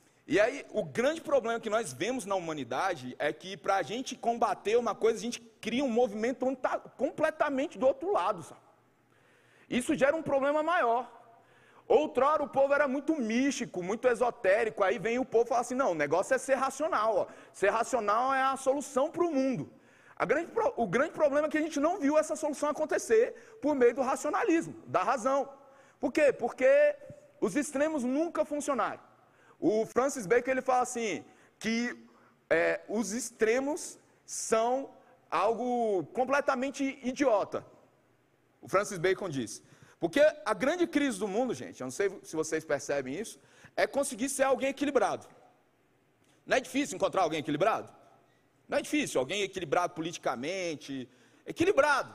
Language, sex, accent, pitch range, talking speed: Portuguese, male, Brazilian, 230-290 Hz, 160 wpm